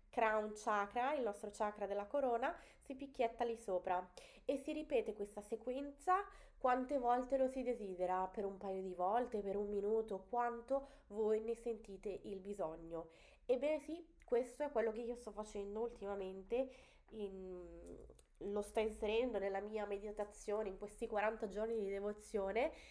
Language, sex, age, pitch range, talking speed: Italian, female, 20-39, 195-240 Hz, 150 wpm